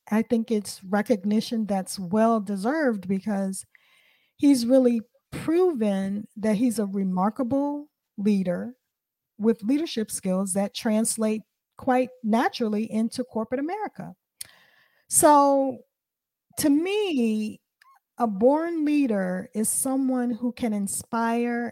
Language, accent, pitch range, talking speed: English, American, 205-260 Hz, 100 wpm